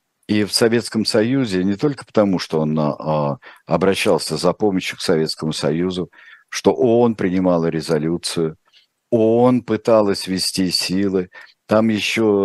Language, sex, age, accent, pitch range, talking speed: Russian, male, 50-69, native, 80-100 Hz, 125 wpm